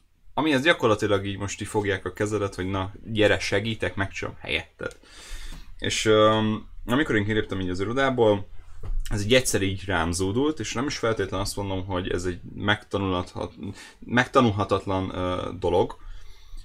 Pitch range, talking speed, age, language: 90-105 Hz, 150 wpm, 20-39, Hungarian